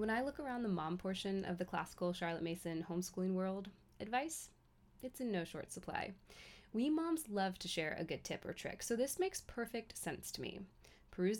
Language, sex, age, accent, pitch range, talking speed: English, female, 20-39, American, 180-245 Hz, 200 wpm